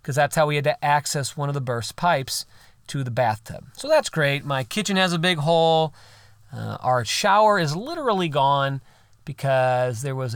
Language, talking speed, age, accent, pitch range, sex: English, 190 wpm, 40-59, American, 125-175 Hz, male